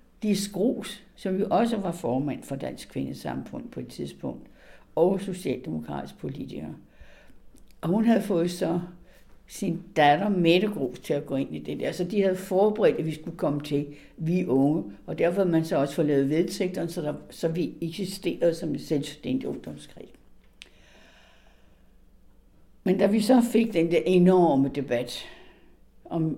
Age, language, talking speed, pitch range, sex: 60-79, Danish, 155 wpm, 135-175 Hz, female